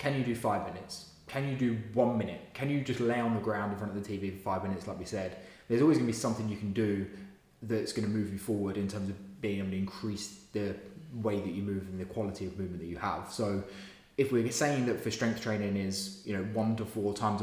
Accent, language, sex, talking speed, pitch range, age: British, English, male, 260 wpm, 95-115 Hz, 20-39